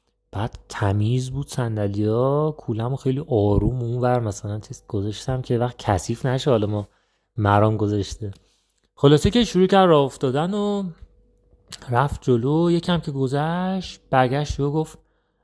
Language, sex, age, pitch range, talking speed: Persian, male, 30-49, 110-155 Hz, 130 wpm